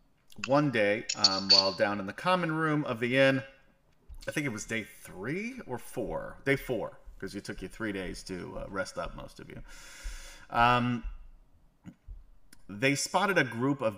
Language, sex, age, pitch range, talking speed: English, male, 30-49, 100-135 Hz, 175 wpm